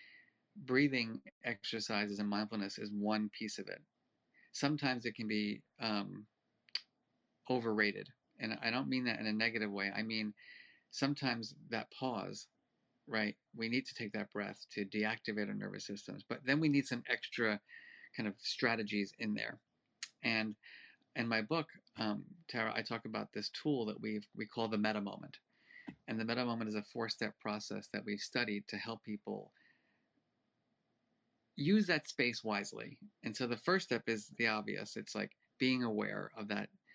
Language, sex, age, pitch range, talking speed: English, male, 30-49, 105-125 Hz, 165 wpm